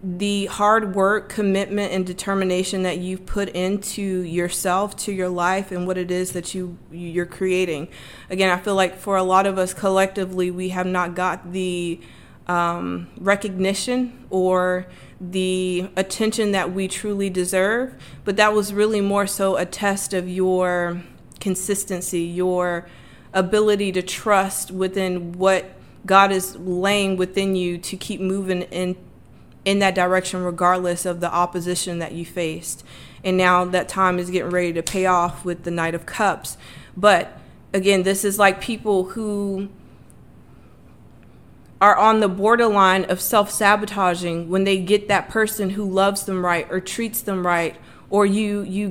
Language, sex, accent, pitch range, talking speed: English, female, American, 180-195 Hz, 155 wpm